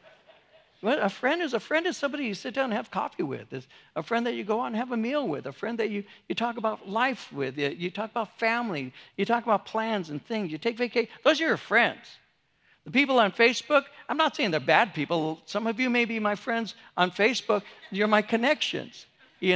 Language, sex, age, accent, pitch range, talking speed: English, male, 60-79, American, 180-235 Hz, 235 wpm